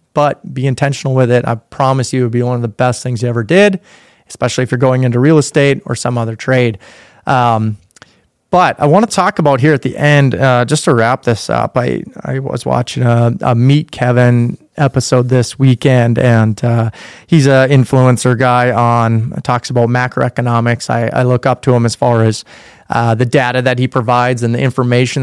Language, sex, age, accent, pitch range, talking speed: English, male, 30-49, American, 120-140 Hz, 205 wpm